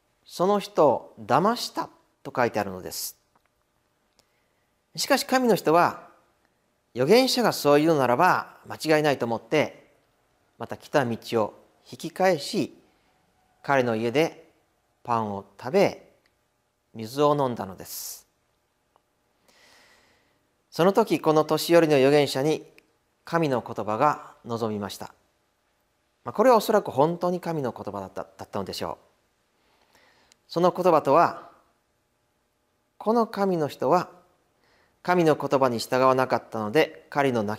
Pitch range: 110-170 Hz